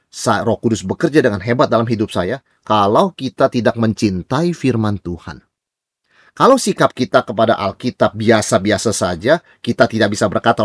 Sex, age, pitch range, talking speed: male, 30-49, 115-155 Hz, 145 wpm